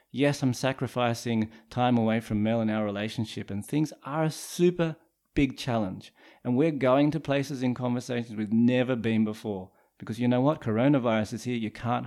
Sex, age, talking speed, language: male, 30-49, 185 wpm, English